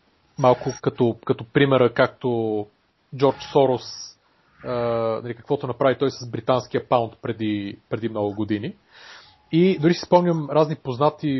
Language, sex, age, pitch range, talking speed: Bulgarian, male, 30-49, 115-145 Hz, 130 wpm